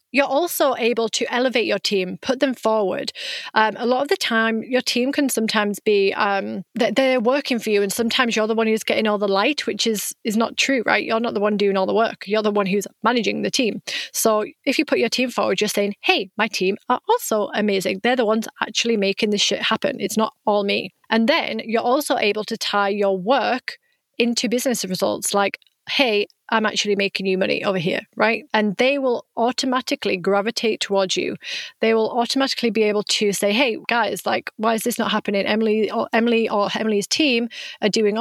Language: English